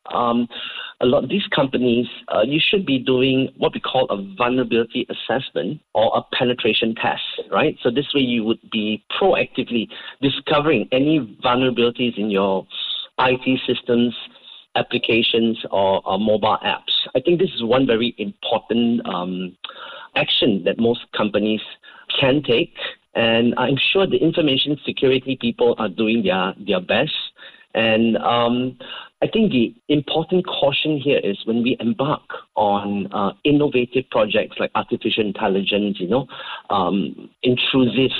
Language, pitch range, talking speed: English, 110-130 Hz, 140 wpm